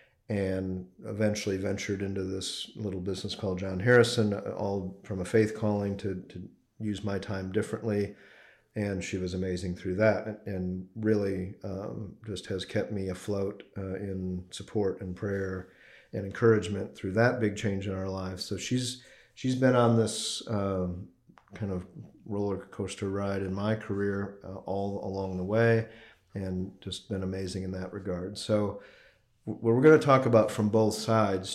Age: 40-59